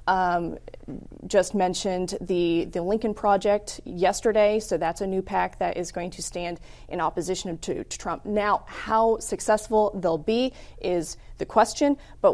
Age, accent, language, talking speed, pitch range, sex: 20-39, American, English, 155 wpm, 175-220 Hz, female